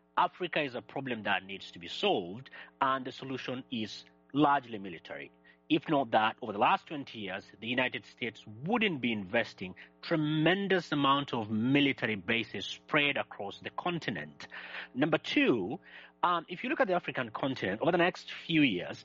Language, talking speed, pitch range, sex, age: English, 165 wpm, 125-180 Hz, male, 30-49